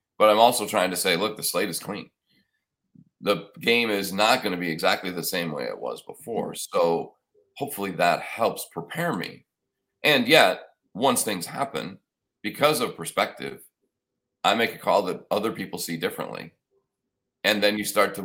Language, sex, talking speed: English, male, 175 wpm